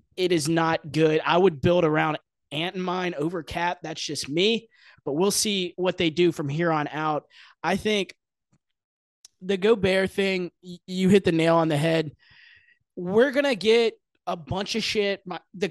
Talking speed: 180 wpm